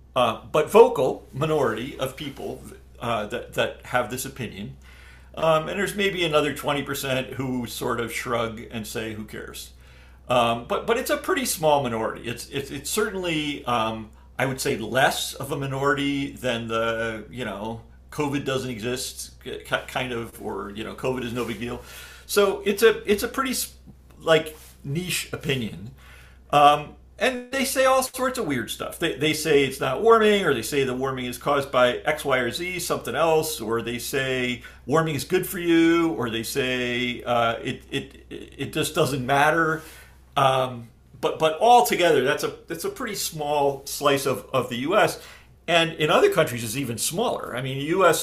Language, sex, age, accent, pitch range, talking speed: English, male, 40-59, American, 115-165 Hz, 180 wpm